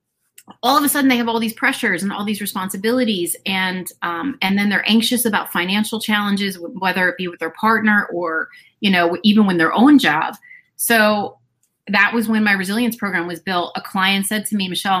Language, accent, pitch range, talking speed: English, American, 185-225 Hz, 205 wpm